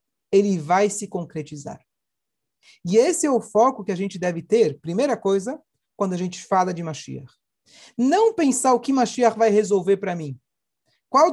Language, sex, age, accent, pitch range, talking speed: Portuguese, male, 40-59, Brazilian, 190-255 Hz, 170 wpm